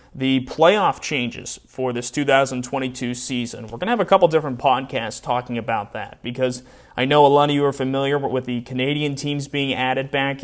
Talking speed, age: 195 wpm, 30-49